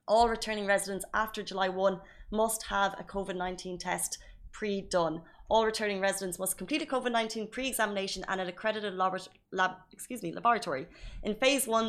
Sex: female